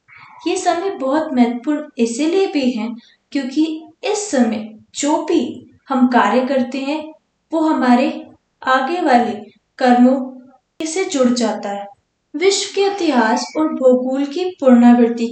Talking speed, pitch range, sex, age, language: 125 wpm, 235-310 Hz, female, 20-39, Hindi